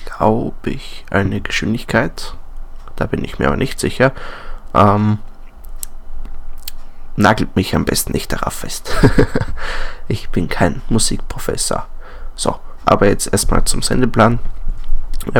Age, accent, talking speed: 20-39, German, 115 wpm